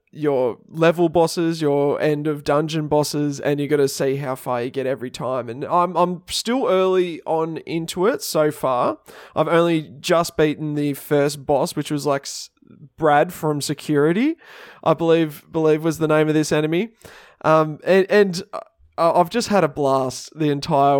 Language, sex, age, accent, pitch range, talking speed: English, male, 20-39, Australian, 140-165 Hz, 170 wpm